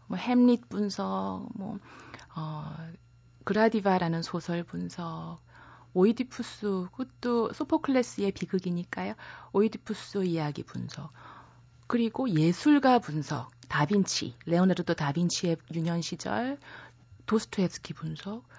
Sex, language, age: female, Korean, 30-49